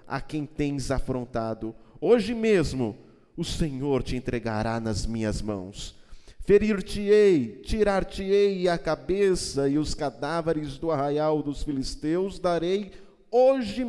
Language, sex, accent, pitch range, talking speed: Portuguese, male, Brazilian, 125-195 Hz, 110 wpm